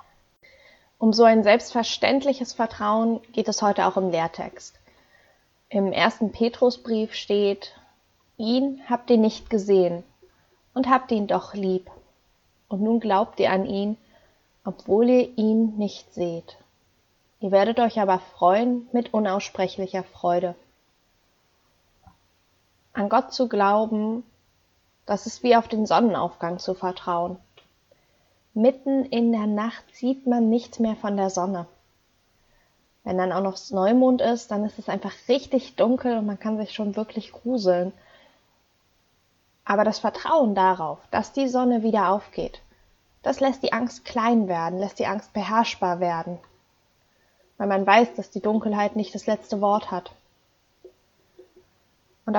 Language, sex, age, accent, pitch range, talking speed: German, female, 20-39, German, 190-235 Hz, 135 wpm